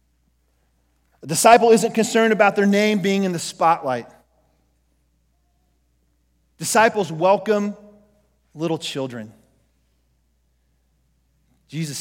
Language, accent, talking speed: English, American, 75 wpm